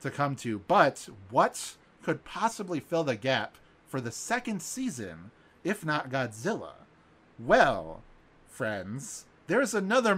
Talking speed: 125 wpm